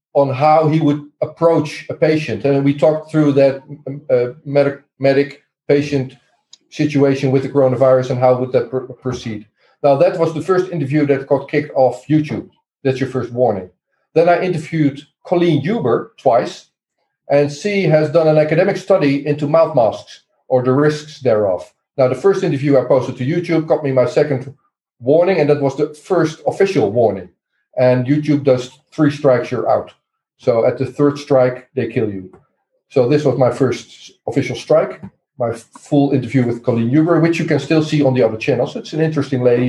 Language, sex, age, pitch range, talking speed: English, male, 40-59, 130-155 Hz, 185 wpm